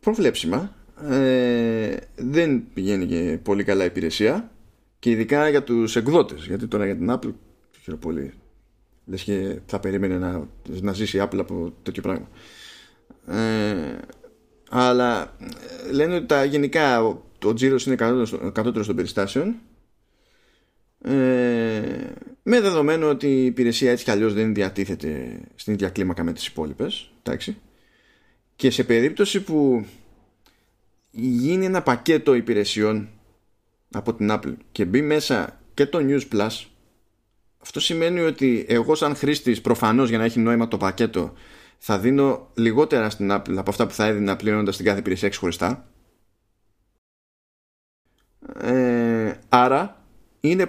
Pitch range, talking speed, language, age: 100-135 Hz, 130 wpm, Greek, 30-49